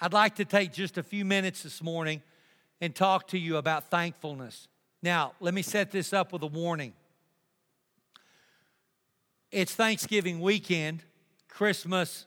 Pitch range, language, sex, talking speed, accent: 170-195 Hz, English, male, 140 wpm, American